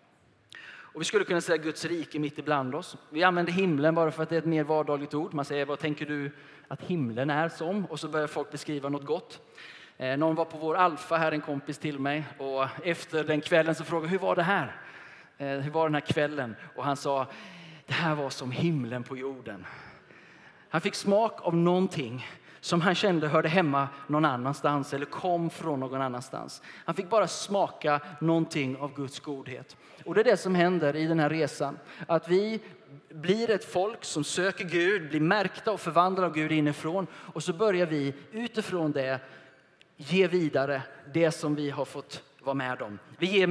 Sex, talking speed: male, 195 wpm